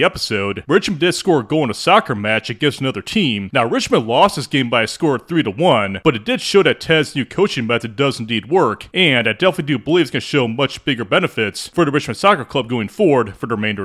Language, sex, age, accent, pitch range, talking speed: English, male, 30-49, American, 110-175 Hz, 245 wpm